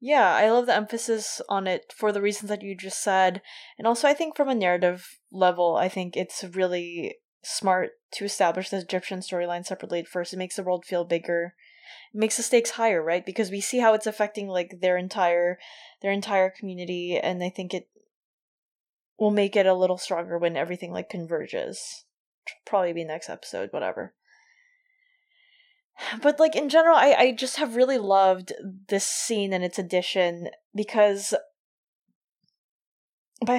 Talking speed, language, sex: 170 wpm, English, female